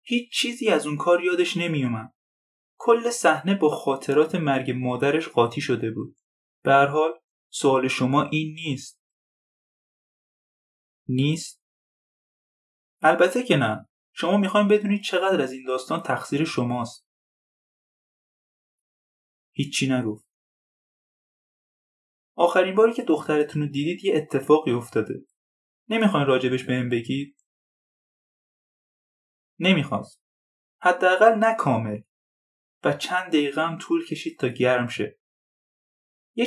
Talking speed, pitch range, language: 105 wpm, 125-180 Hz, Persian